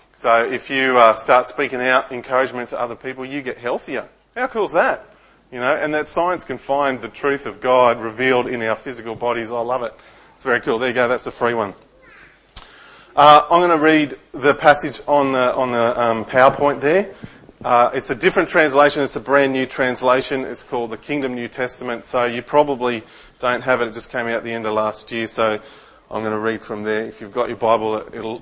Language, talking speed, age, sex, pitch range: English, 220 wpm, 30-49, male, 120-145 Hz